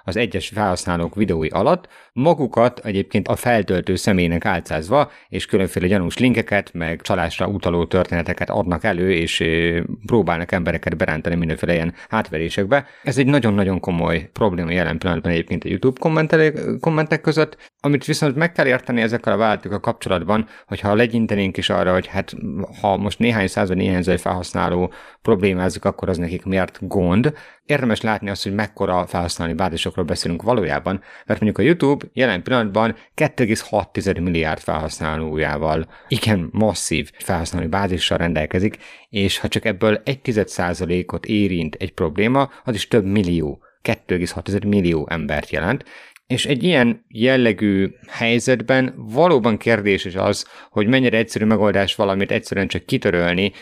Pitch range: 90-115 Hz